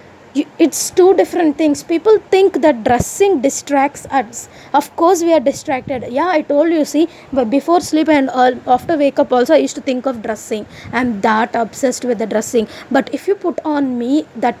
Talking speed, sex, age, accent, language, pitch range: 195 wpm, female, 20-39, Indian, English, 245-315 Hz